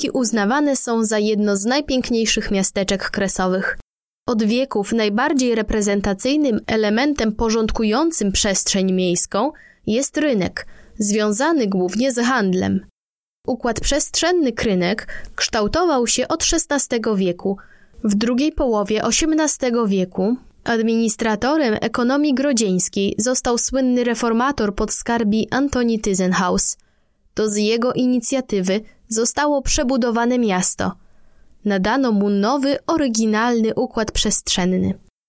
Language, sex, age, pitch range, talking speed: Polish, female, 20-39, 205-255 Hz, 100 wpm